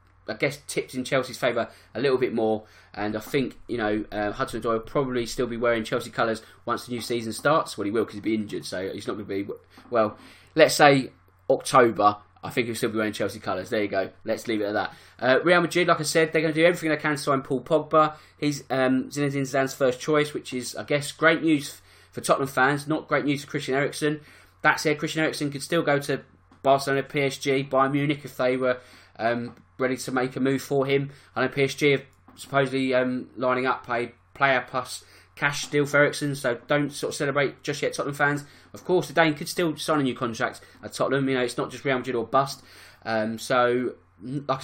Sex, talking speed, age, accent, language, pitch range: male, 230 wpm, 20-39, British, English, 120-145 Hz